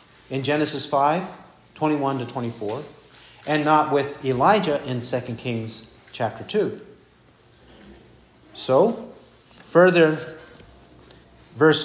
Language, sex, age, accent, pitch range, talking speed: English, male, 50-69, American, 150-225 Hz, 95 wpm